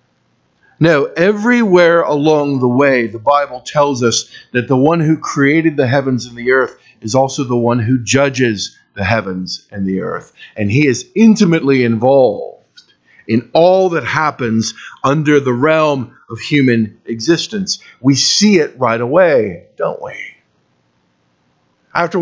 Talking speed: 145 wpm